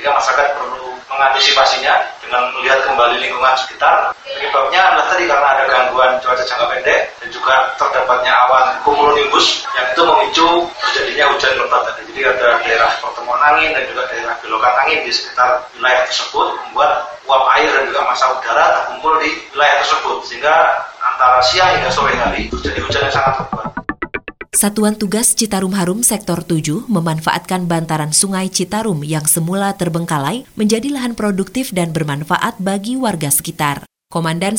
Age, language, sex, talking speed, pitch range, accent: 30-49, Indonesian, male, 150 wpm, 155-210 Hz, native